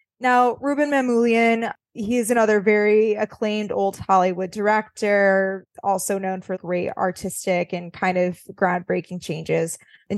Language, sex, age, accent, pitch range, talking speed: English, female, 20-39, American, 195-275 Hz, 130 wpm